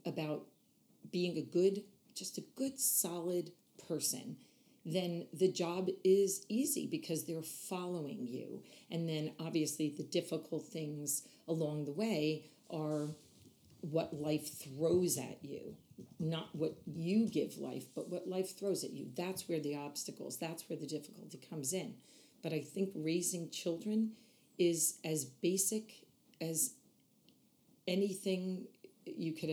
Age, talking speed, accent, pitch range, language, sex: 40-59, 135 wpm, American, 150-180 Hz, English, female